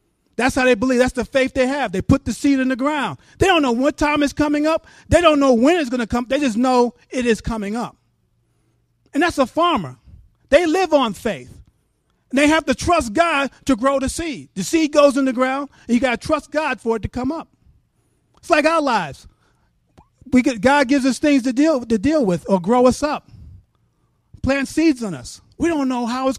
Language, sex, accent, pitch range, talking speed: English, male, American, 245-305 Hz, 230 wpm